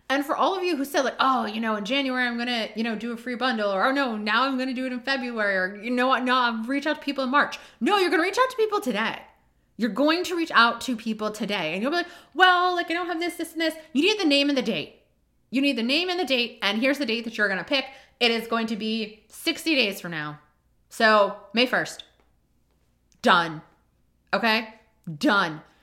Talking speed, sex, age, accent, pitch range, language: 265 wpm, female, 30-49, American, 220-295 Hz, English